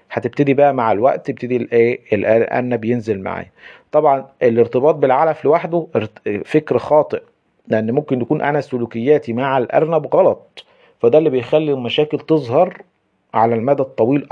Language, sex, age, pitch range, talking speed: Arabic, male, 40-59, 120-155 Hz, 130 wpm